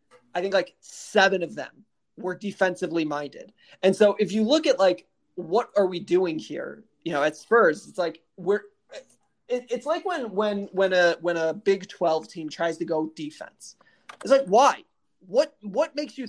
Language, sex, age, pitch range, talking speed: English, male, 20-39, 170-230 Hz, 185 wpm